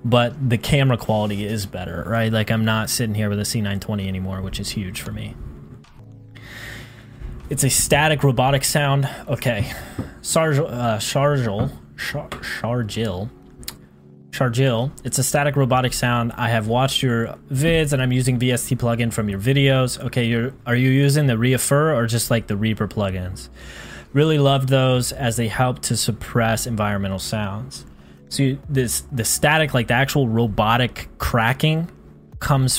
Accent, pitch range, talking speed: American, 105-135 Hz, 150 wpm